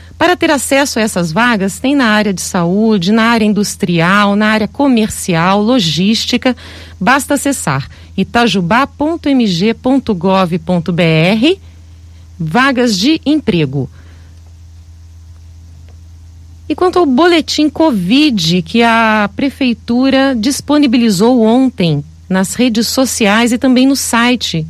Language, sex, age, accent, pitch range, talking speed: Portuguese, female, 40-59, Brazilian, 165-265 Hz, 100 wpm